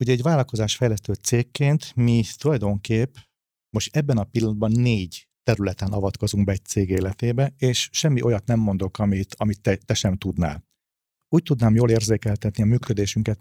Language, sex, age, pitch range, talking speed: Hungarian, male, 40-59, 100-125 Hz, 150 wpm